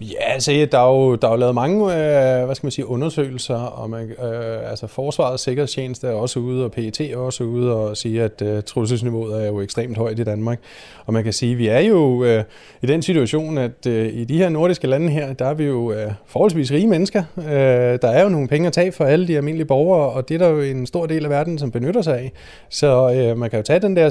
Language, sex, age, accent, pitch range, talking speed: Danish, male, 30-49, native, 130-185 Hz, 265 wpm